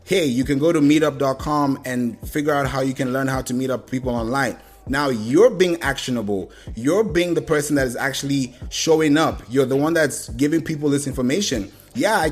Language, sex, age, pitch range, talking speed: English, male, 20-39, 120-150 Hz, 205 wpm